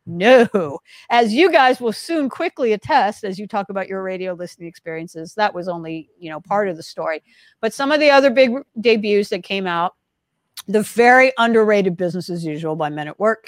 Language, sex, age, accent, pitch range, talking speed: English, female, 50-69, American, 165-225 Hz, 200 wpm